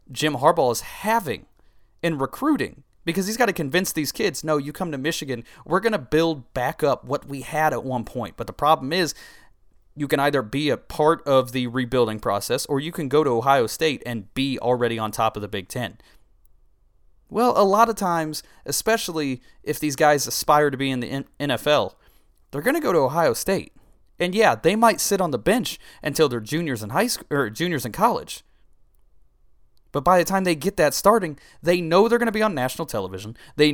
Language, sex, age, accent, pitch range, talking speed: English, male, 30-49, American, 120-170 Hz, 210 wpm